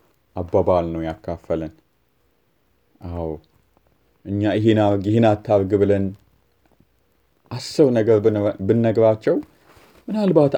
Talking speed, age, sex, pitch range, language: 75 wpm, 30-49, male, 90-130 Hz, Amharic